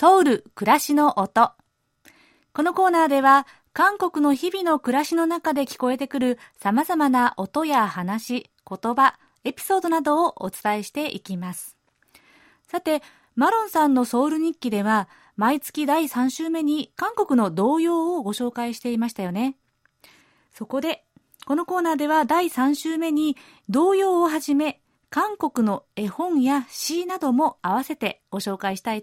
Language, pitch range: Japanese, 215-315 Hz